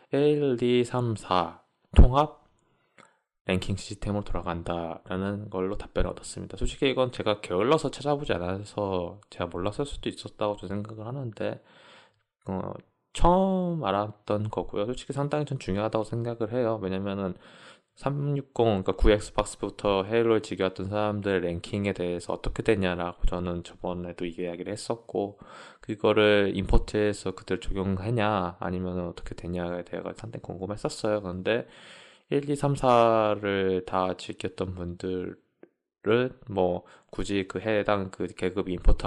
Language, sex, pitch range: Korean, male, 95-115 Hz